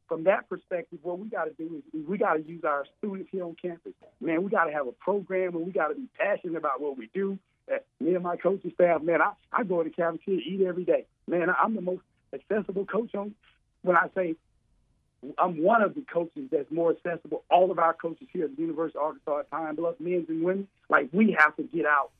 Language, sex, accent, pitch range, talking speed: English, male, American, 150-185 Hz, 245 wpm